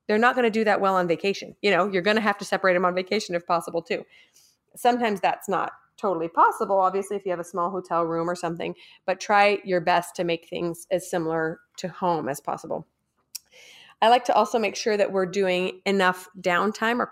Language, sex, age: English, female, 30-49